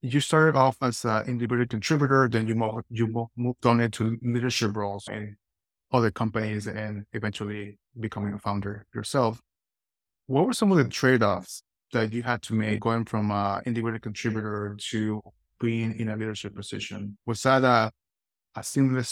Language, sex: English, male